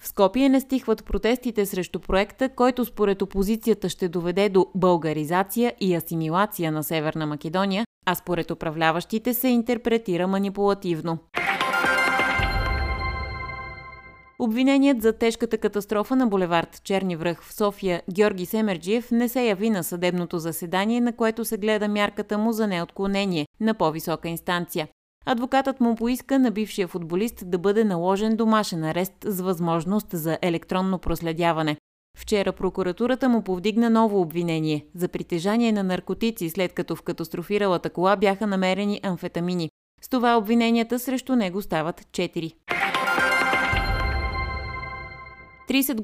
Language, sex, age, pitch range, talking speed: Bulgarian, female, 30-49, 170-220 Hz, 125 wpm